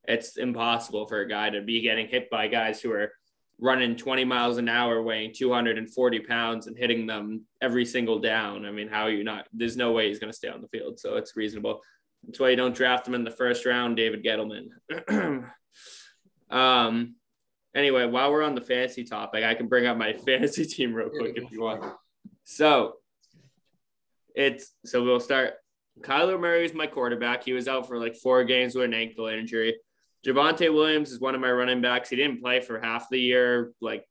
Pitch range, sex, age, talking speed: 115-125 Hz, male, 10-29, 200 wpm